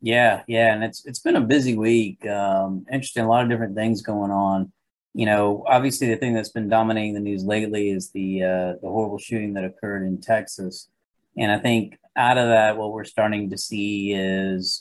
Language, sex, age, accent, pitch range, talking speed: English, male, 40-59, American, 95-110 Hz, 205 wpm